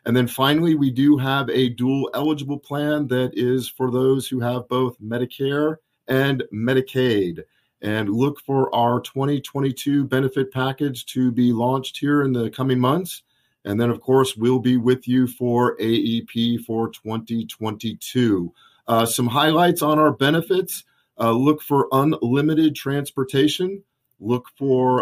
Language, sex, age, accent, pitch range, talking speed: English, male, 40-59, American, 120-145 Hz, 145 wpm